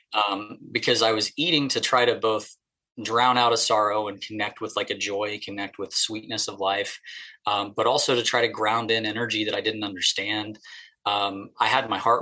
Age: 20-39